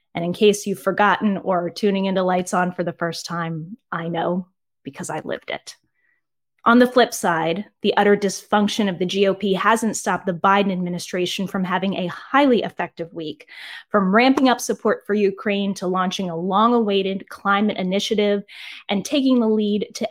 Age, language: 20-39, English